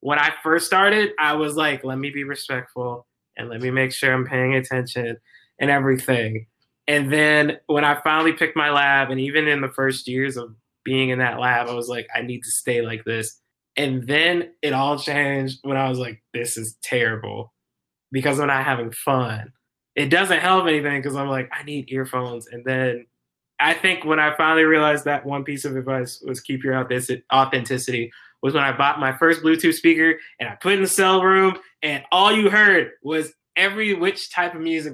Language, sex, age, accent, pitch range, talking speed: English, male, 20-39, American, 125-155 Hz, 205 wpm